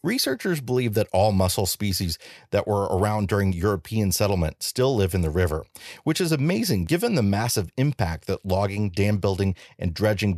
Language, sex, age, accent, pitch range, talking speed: English, male, 40-59, American, 90-115 Hz, 175 wpm